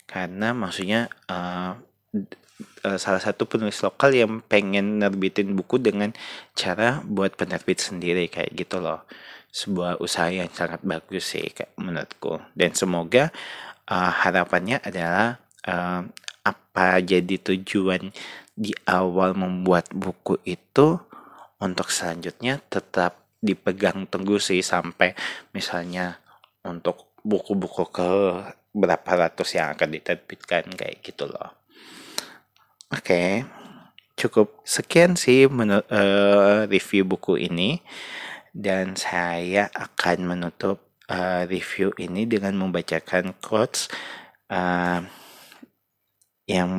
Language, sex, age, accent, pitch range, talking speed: Indonesian, male, 30-49, native, 90-100 Hz, 95 wpm